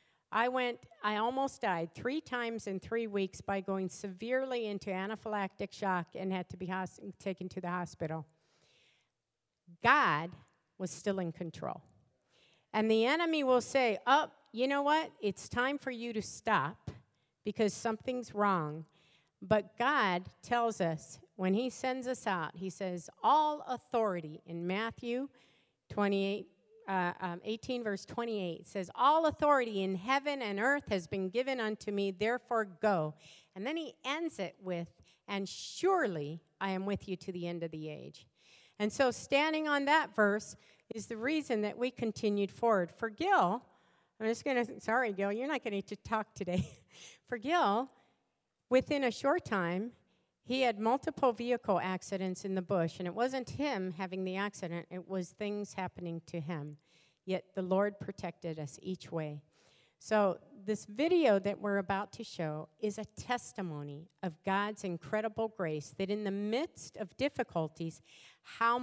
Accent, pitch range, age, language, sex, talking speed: American, 180-235 Hz, 50-69, English, female, 160 wpm